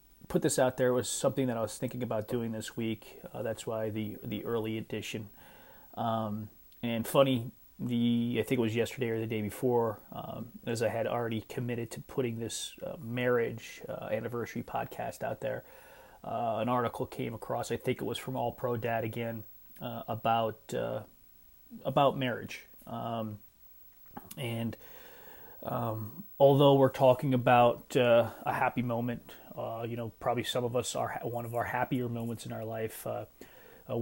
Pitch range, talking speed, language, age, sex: 115-130 Hz, 175 wpm, English, 30-49, male